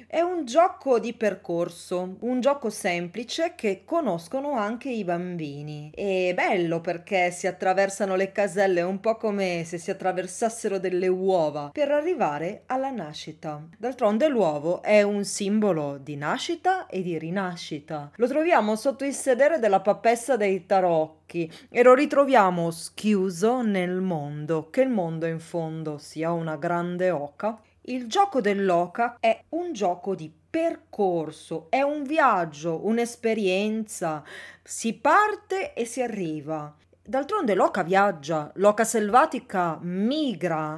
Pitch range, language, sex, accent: 170-235 Hz, Italian, female, native